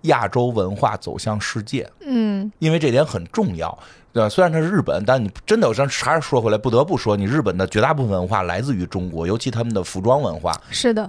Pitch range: 95-135 Hz